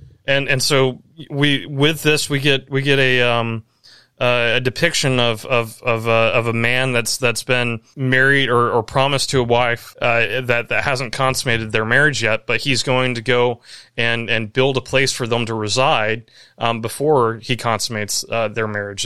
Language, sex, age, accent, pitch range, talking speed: English, male, 20-39, American, 115-135 Hz, 190 wpm